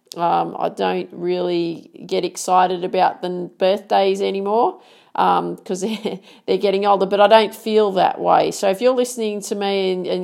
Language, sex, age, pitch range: English, female, 40-59, 165-210 Hz